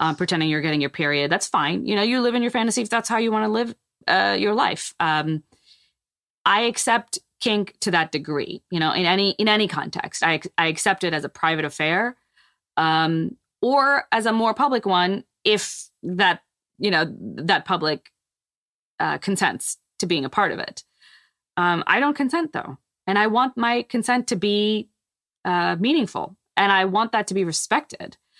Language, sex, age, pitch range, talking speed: English, female, 20-39, 155-215 Hz, 190 wpm